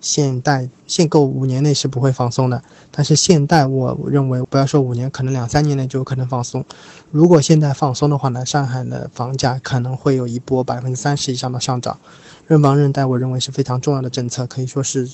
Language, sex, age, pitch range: Chinese, male, 20-39, 130-145 Hz